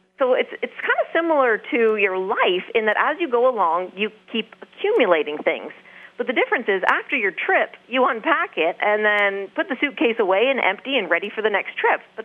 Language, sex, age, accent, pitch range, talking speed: English, female, 40-59, American, 195-265 Hz, 215 wpm